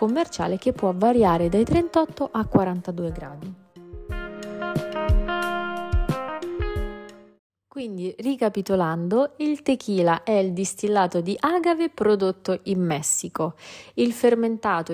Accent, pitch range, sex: native, 170-210 Hz, female